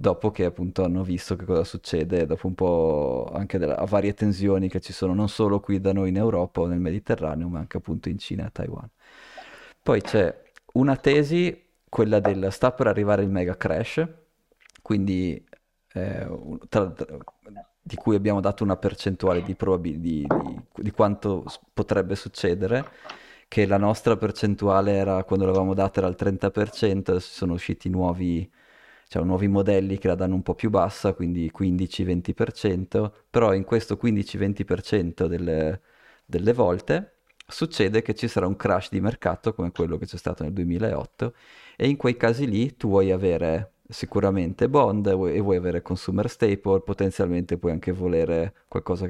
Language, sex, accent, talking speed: Italian, male, native, 165 wpm